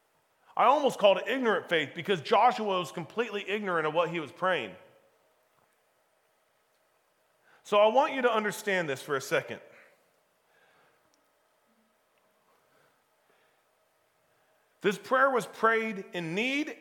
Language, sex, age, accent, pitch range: Japanese, male, 40-59, American, 160-210 Hz